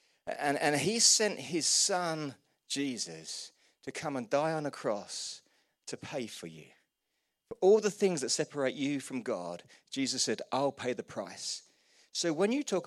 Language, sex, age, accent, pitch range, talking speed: English, male, 40-59, British, 120-180 Hz, 175 wpm